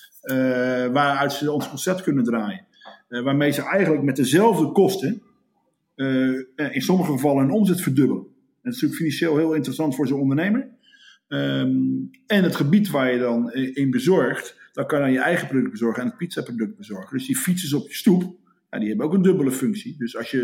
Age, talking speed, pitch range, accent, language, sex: 50-69, 200 wpm, 125-160 Hz, Dutch, Dutch, male